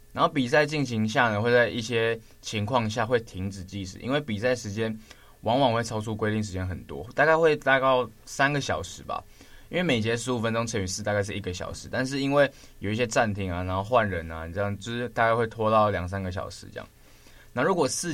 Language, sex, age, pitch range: Chinese, male, 20-39, 95-120 Hz